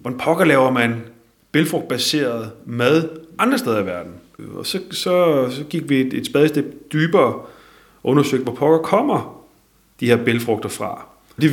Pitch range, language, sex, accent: 115-150 Hz, Danish, male, native